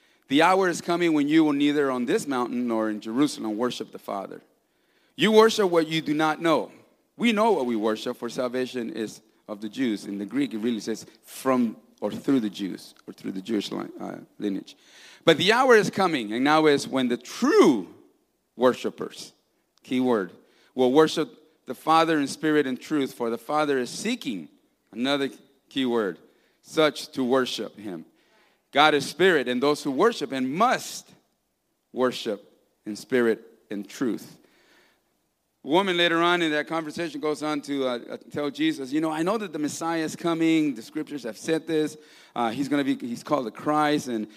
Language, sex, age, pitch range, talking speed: English, male, 40-59, 125-165 Hz, 185 wpm